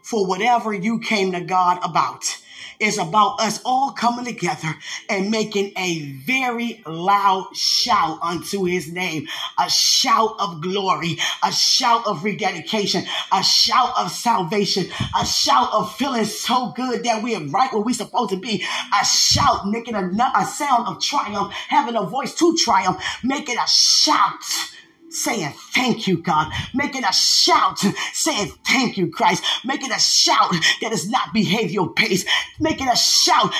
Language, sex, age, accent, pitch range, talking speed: English, female, 20-39, American, 190-235 Hz, 155 wpm